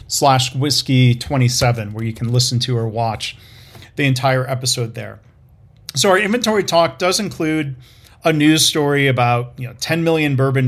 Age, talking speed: 40-59, 170 wpm